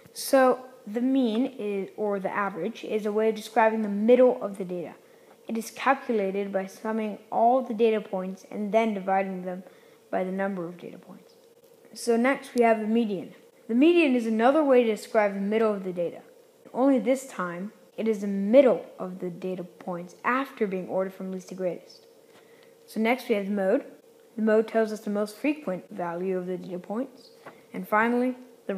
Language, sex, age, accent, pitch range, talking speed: English, female, 10-29, American, 190-255 Hz, 190 wpm